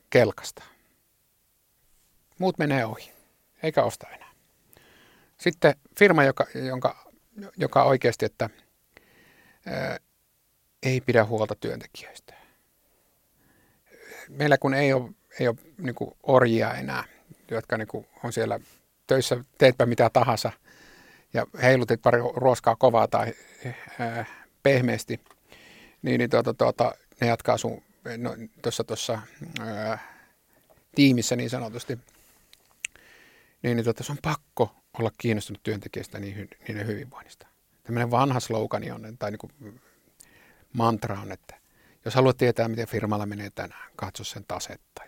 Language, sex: Finnish, male